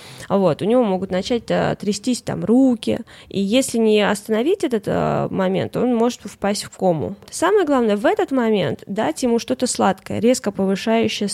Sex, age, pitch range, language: female, 20-39, 180-220 Hz, Russian